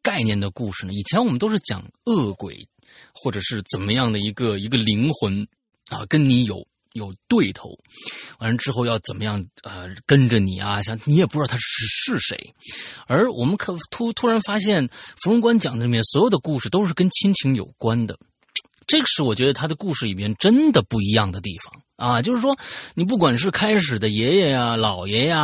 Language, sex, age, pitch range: Chinese, male, 30-49, 110-180 Hz